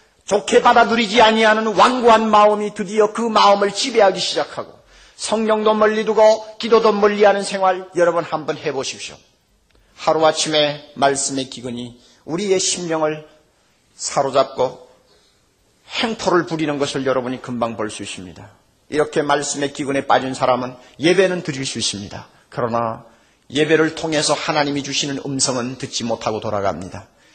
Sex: male